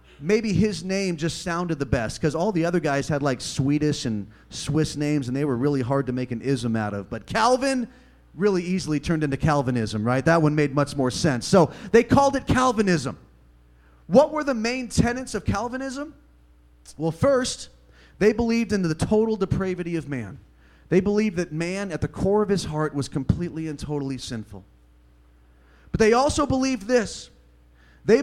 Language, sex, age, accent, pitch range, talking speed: English, male, 30-49, American, 130-210 Hz, 185 wpm